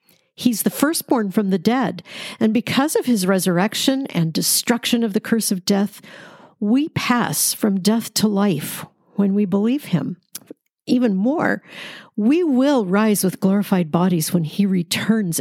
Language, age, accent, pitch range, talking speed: English, 50-69, American, 195-240 Hz, 150 wpm